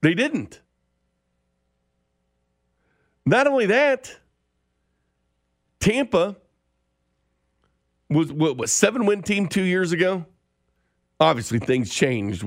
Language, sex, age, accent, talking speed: English, male, 50-69, American, 85 wpm